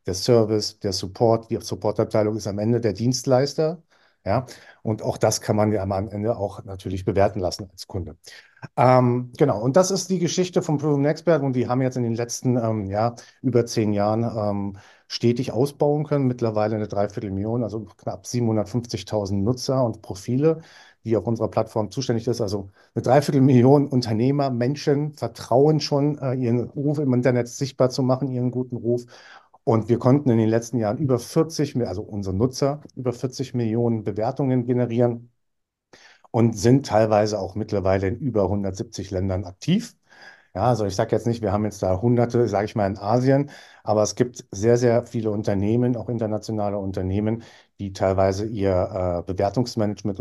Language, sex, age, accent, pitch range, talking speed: German, male, 50-69, German, 105-125 Hz, 170 wpm